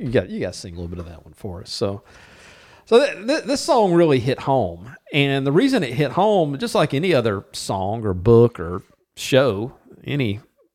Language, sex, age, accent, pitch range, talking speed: English, male, 50-69, American, 110-160 Hz, 210 wpm